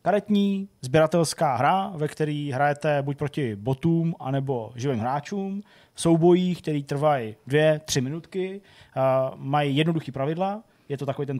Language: Czech